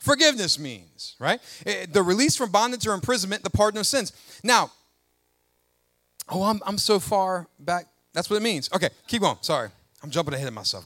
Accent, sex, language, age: American, male, English, 30-49